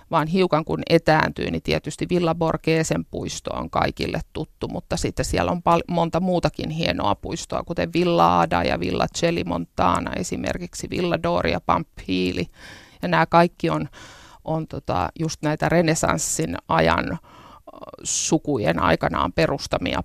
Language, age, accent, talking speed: Finnish, 50-69, native, 130 wpm